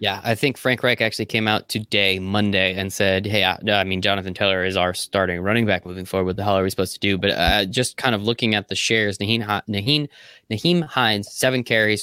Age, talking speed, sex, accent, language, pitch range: 20-39, 240 wpm, male, American, English, 100-120 Hz